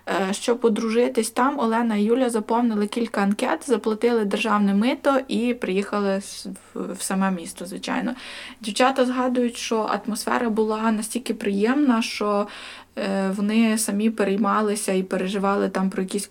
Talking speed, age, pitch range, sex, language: 125 wpm, 20-39, 195-225 Hz, female, Ukrainian